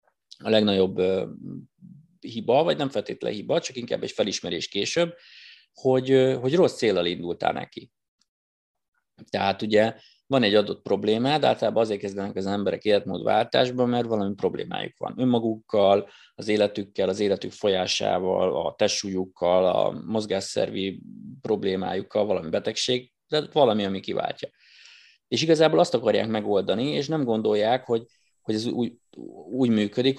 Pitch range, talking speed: 105-140 Hz, 130 wpm